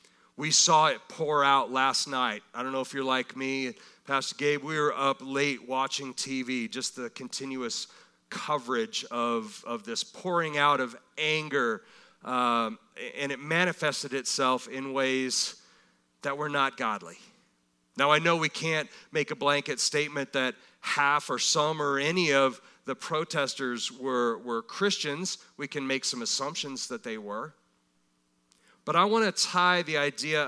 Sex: male